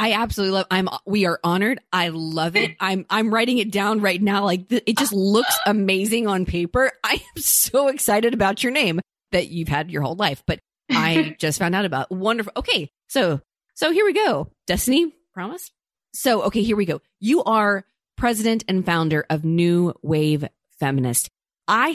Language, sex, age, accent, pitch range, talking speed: English, female, 30-49, American, 160-205 Hz, 190 wpm